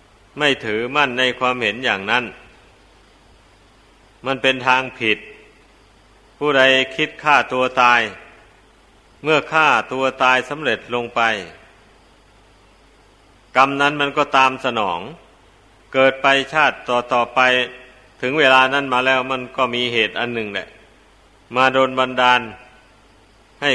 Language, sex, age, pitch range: Thai, male, 60-79, 120-135 Hz